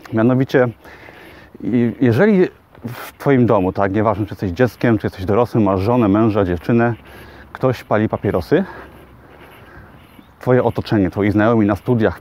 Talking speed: 130 wpm